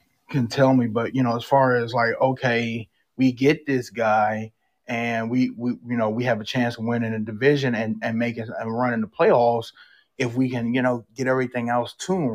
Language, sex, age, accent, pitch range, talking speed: English, male, 20-39, American, 115-140 Hz, 225 wpm